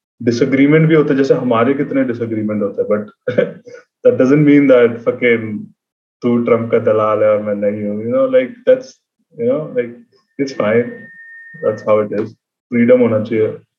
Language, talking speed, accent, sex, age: Hindi, 60 wpm, native, male, 20-39